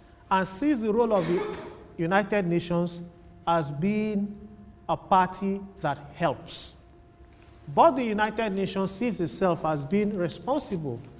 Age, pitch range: 40-59, 145-200 Hz